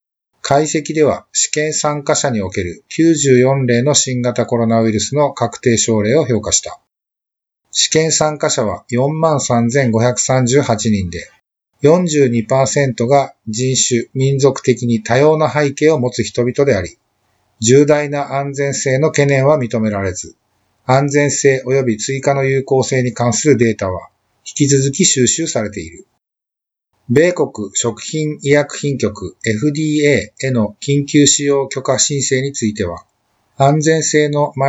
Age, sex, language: 50-69, male, Japanese